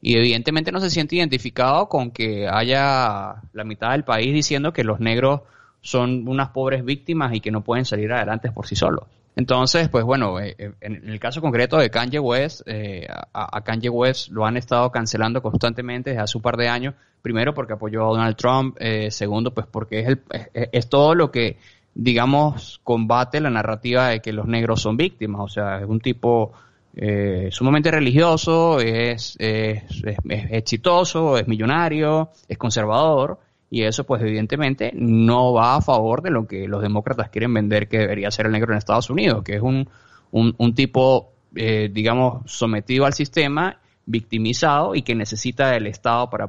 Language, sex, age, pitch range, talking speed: Spanish, male, 20-39, 110-130 Hz, 180 wpm